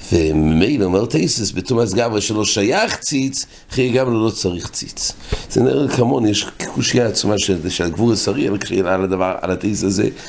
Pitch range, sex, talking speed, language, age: 95-130 Hz, male, 155 wpm, English, 60-79